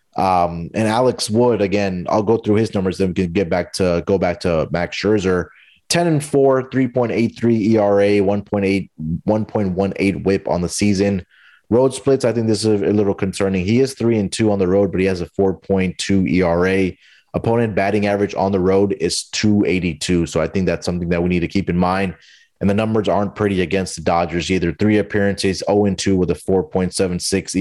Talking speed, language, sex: 200 wpm, English, male